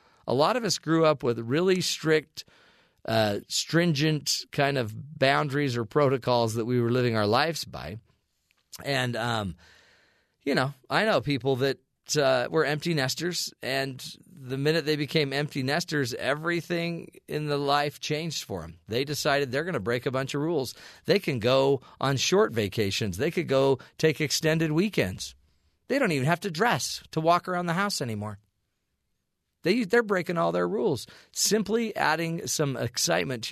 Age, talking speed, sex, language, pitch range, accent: 40-59, 170 wpm, male, English, 115-160 Hz, American